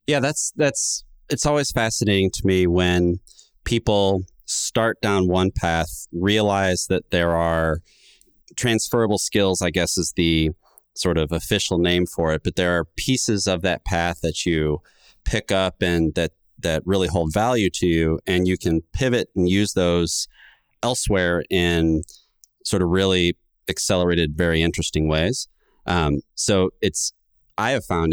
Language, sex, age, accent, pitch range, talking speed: English, male, 30-49, American, 80-100 Hz, 150 wpm